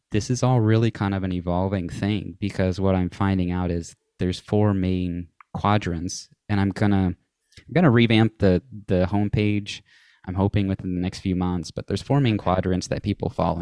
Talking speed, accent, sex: 185 wpm, American, male